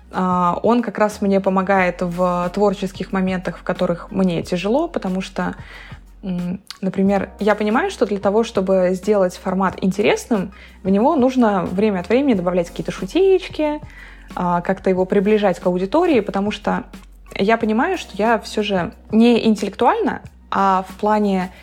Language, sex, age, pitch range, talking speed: Russian, female, 20-39, 185-220 Hz, 140 wpm